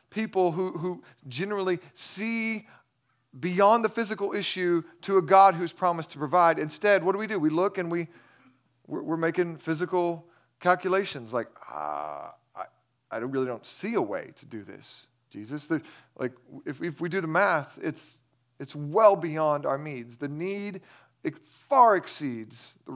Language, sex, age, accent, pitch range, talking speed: English, male, 40-59, American, 135-175 Hz, 165 wpm